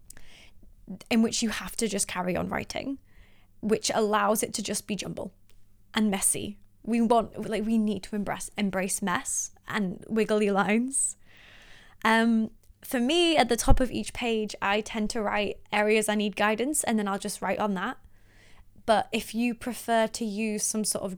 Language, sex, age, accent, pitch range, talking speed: English, female, 20-39, British, 190-235 Hz, 180 wpm